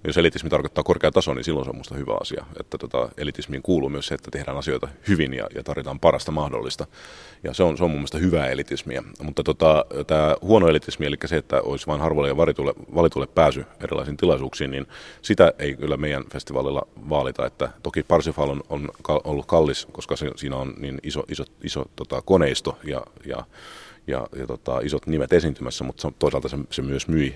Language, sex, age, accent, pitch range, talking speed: Finnish, male, 30-49, native, 70-75 Hz, 195 wpm